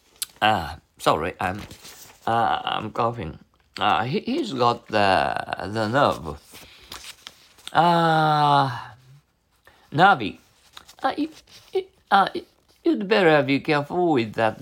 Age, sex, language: 50-69, male, Japanese